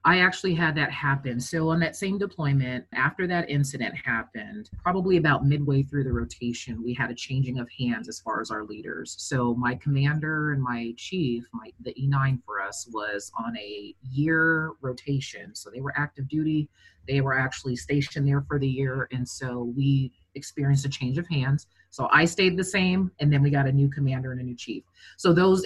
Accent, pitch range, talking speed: American, 130-165 Hz, 200 wpm